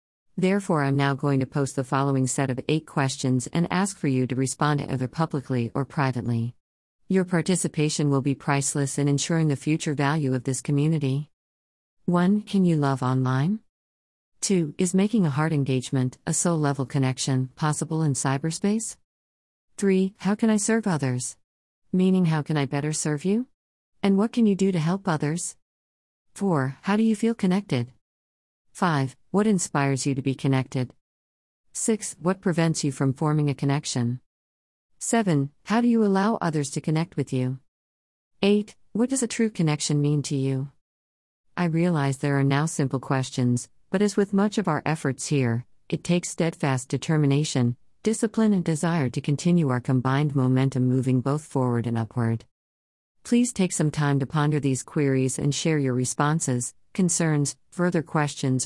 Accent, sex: American, female